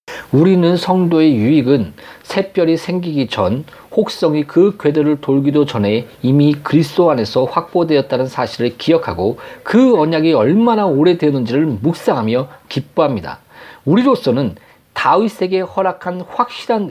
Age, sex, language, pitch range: 40-59, male, Korean, 130-185 Hz